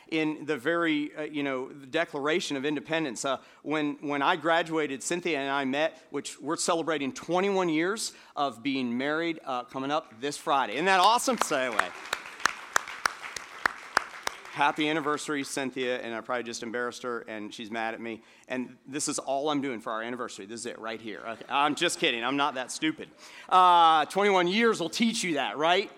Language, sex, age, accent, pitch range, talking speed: English, male, 40-59, American, 135-165 Hz, 185 wpm